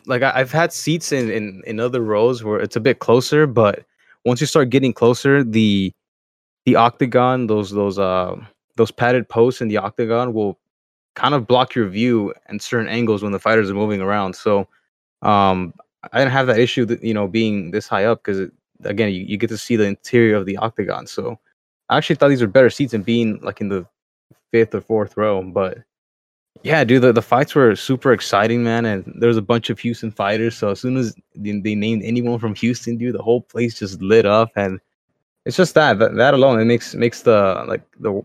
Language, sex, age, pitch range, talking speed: English, male, 20-39, 100-120 Hz, 210 wpm